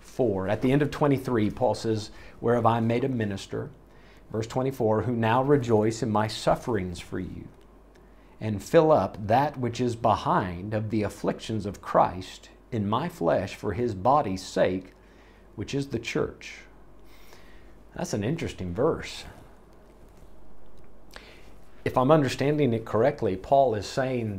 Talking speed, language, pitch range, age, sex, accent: 145 wpm, English, 105-135 Hz, 50-69, male, American